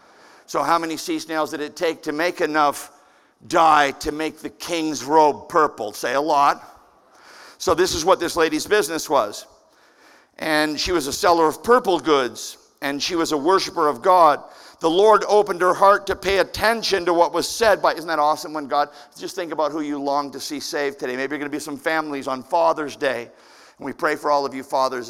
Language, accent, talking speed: English, American, 215 wpm